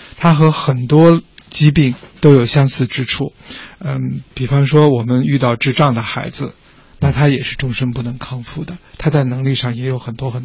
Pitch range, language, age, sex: 125-160 Hz, Chinese, 60-79, male